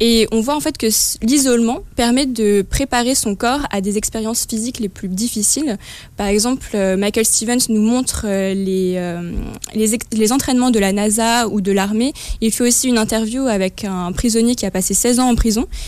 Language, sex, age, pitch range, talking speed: French, female, 20-39, 200-245 Hz, 210 wpm